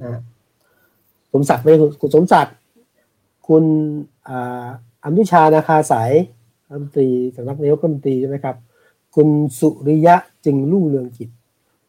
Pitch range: 120-165 Hz